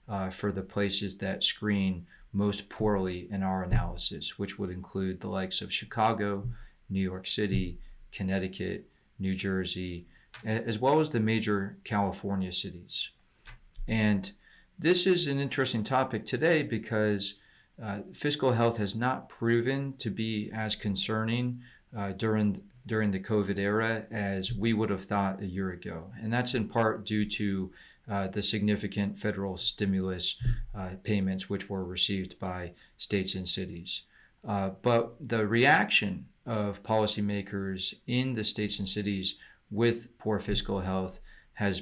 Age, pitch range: 40-59, 95-115 Hz